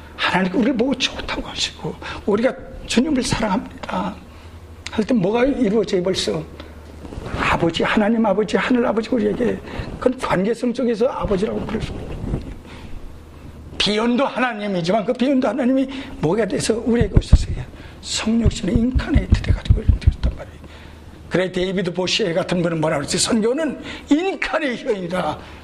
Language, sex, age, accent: Korean, male, 60-79, native